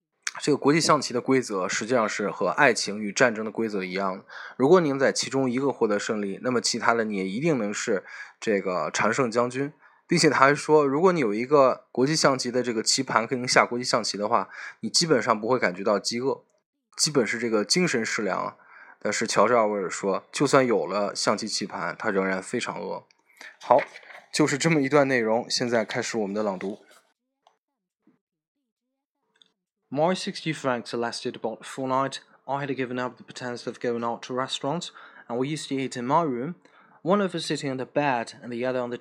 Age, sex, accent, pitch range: 20-39, male, native, 120-150 Hz